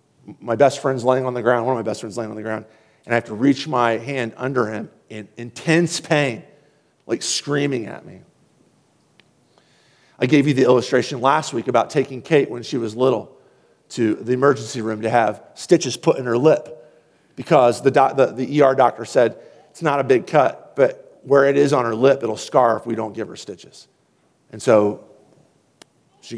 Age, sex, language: 50-69, male, English